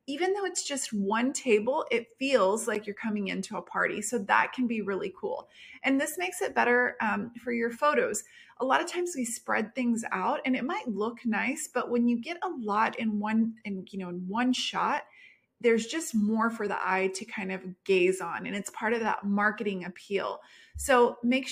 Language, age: English, 30-49